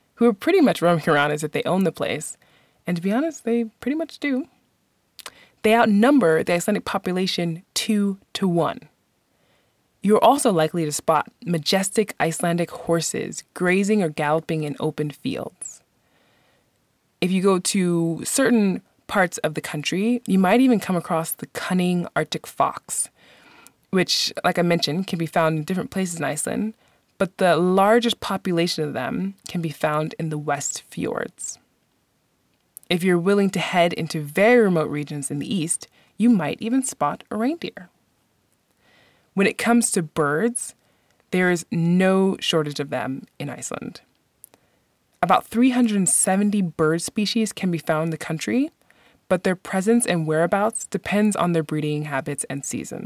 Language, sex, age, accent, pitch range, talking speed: English, female, 20-39, American, 160-215 Hz, 155 wpm